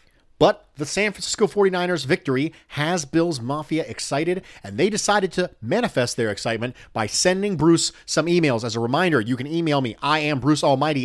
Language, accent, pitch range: English, American, 120-160 Hz